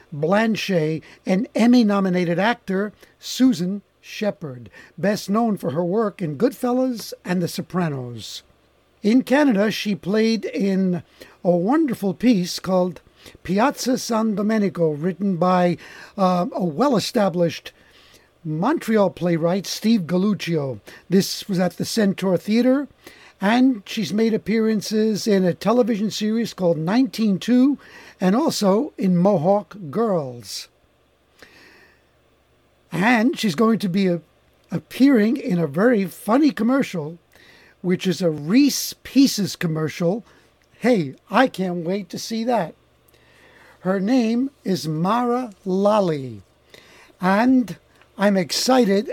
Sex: male